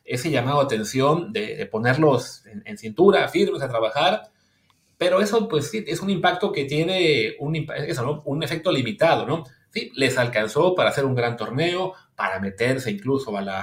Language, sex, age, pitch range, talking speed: Spanish, male, 30-49, 120-185 Hz, 185 wpm